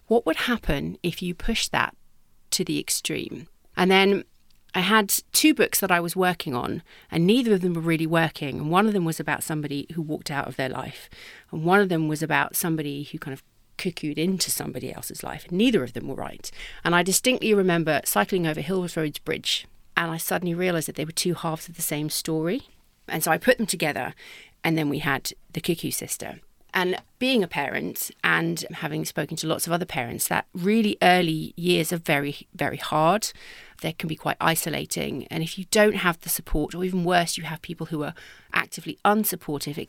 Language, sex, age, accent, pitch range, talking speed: English, female, 40-59, British, 155-185 Hz, 210 wpm